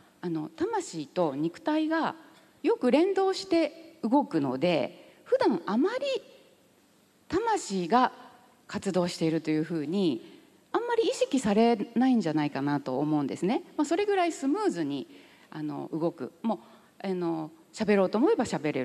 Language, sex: Japanese, female